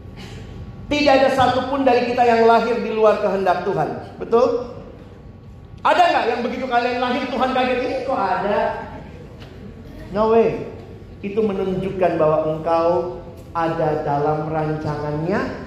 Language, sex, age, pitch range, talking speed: Indonesian, male, 40-59, 160-240 Hz, 125 wpm